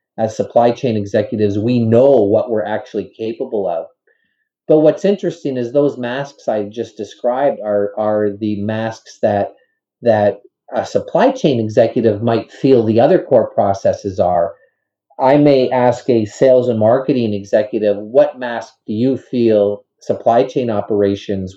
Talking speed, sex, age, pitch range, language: 145 wpm, male, 30-49, 110-130 Hz, English